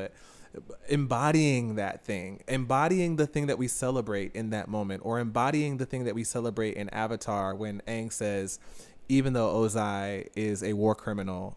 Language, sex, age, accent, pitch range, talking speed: English, male, 20-39, American, 105-135 Hz, 165 wpm